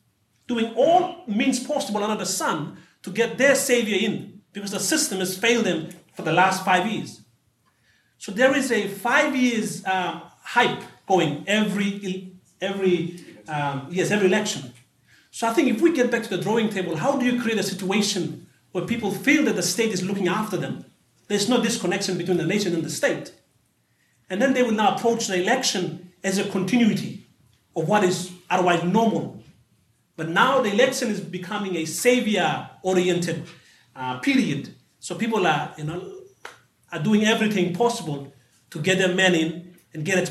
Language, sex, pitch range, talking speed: English, male, 165-215 Hz, 175 wpm